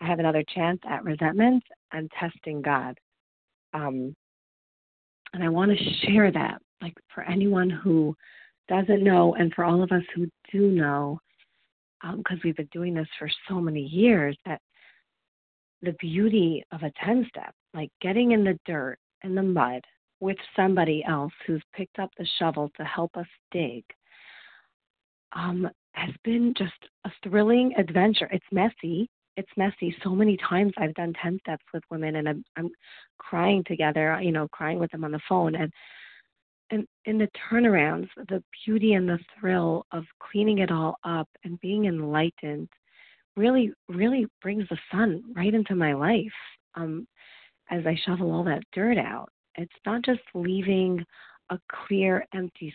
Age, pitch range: 40-59, 160-200 Hz